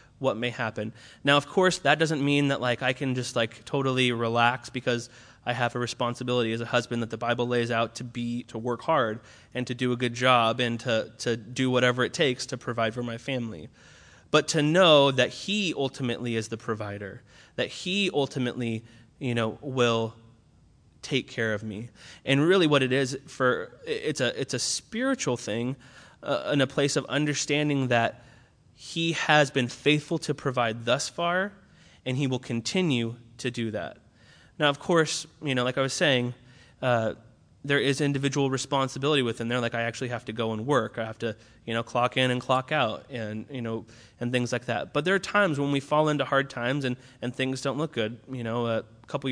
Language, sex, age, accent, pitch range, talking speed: English, male, 20-39, American, 115-140 Hz, 205 wpm